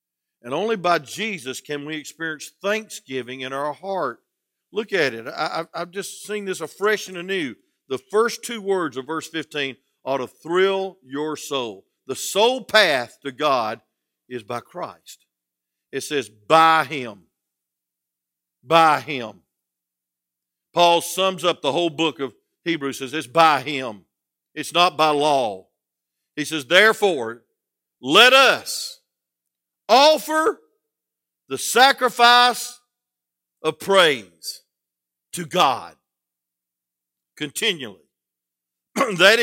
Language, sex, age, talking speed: English, male, 50-69, 120 wpm